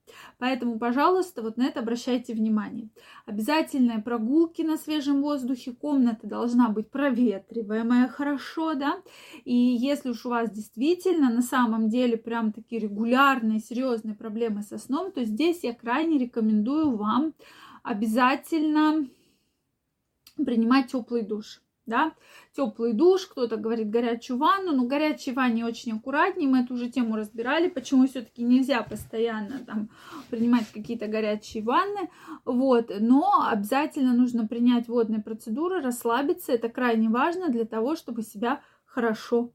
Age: 20-39